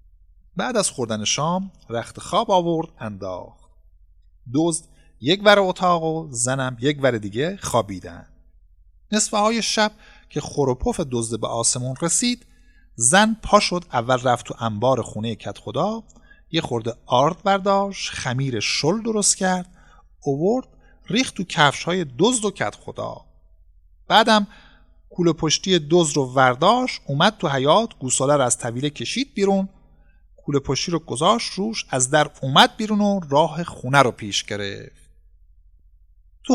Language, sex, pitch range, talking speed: Persian, male, 115-190 Hz, 140 wpm